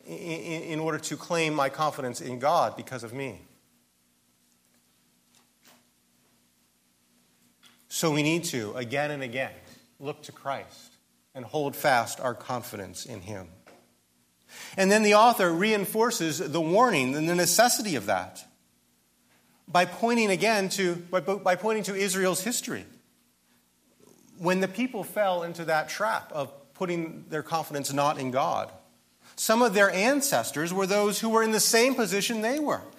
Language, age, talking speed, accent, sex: English, 40-59, 140 wpm, American, male